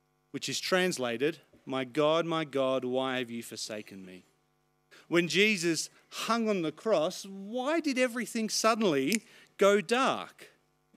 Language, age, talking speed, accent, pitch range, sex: English, 40-59, 130 wpm, Australian, 160-220 Hz, male